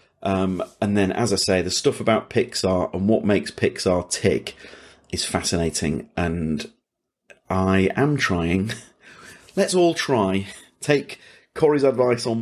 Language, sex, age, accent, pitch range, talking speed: English, male, 30-49, British, 90-120 Hz, 135 wpm